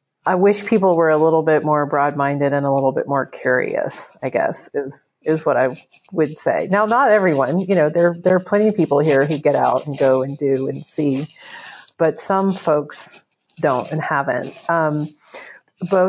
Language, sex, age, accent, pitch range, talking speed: English, female, 40-59, American, 145-170 Hz, 195 wpm